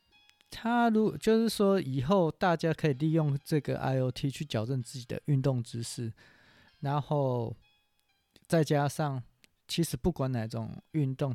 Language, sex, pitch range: Chinese, male, 115-145 Hz